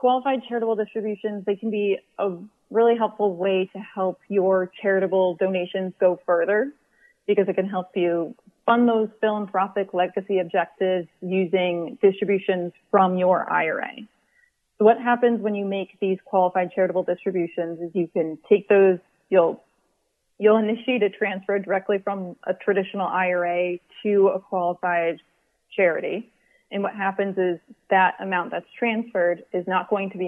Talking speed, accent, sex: 145 wpm, American, female